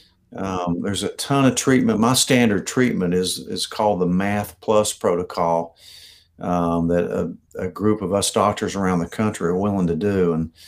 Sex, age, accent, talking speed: male, 50-69, American, 180 wpm